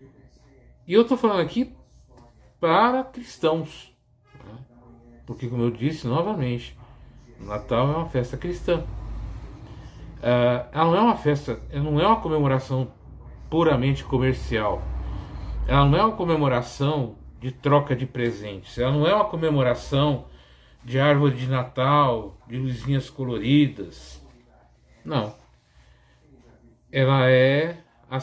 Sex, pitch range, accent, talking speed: male, 120-160 Hz, Brazilian, 120 wpm